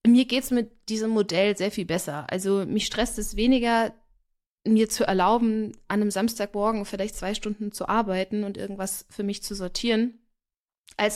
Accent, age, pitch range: German, 20-39, 195-225 Hz